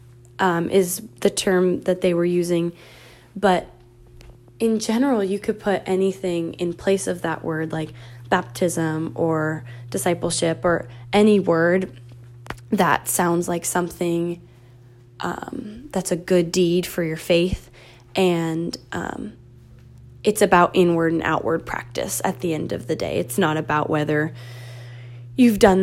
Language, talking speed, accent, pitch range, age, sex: English, 135 wpm, American, 120-190 Hz, 20-39, female